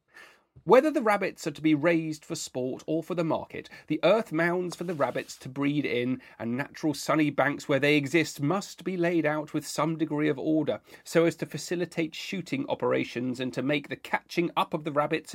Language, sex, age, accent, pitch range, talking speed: English, male, 40-59, British, 140-175 Hz, 205 wpm